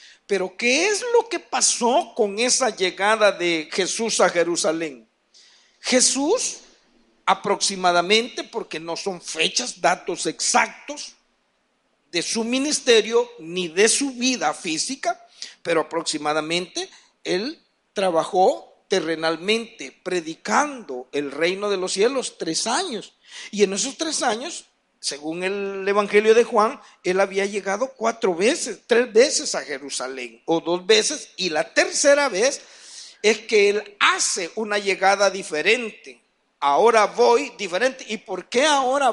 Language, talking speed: Spanish, 125 wpm